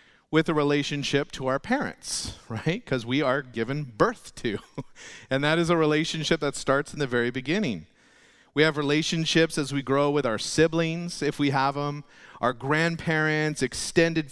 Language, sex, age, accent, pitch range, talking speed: English, male, 40-59, American, 135-160 Hz, 170 wpm